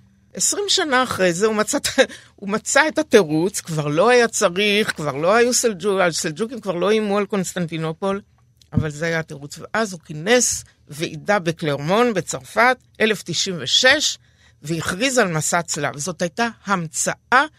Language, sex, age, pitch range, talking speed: Hebrew, female, 60-79, 170-245 Hz, 140 wpm